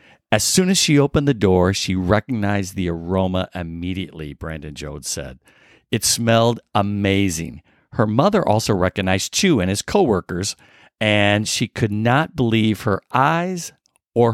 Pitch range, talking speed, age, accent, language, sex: 90-130 Hz, 140 wpm, 50-69, American, English, male